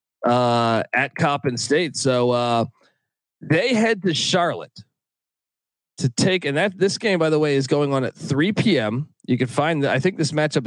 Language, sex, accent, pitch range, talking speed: English, male, American, 125-175 Hz, 180 wpm